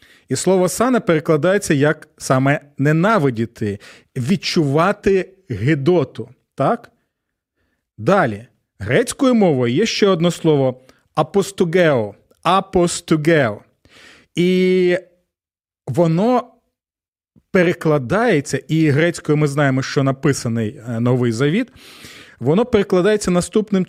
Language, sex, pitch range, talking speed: Ukrainian, male, 150-195 Hz, 85 wpm